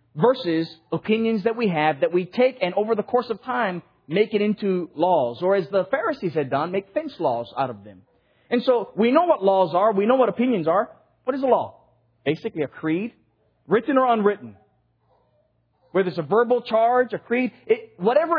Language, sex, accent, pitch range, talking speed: English, male, American, 145-235 Hz, 195 wpm